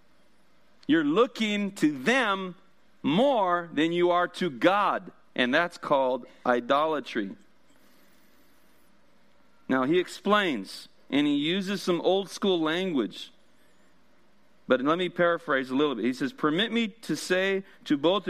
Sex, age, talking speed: male, 40-59, 130 wpm